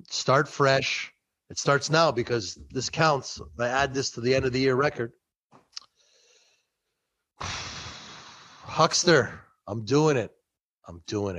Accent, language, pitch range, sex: American, English, 120-165 Hz, male